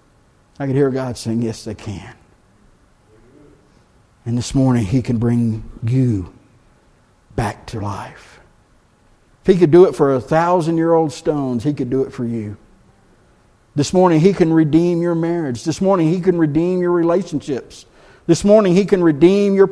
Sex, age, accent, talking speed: male, 50-69, American, 160 wpm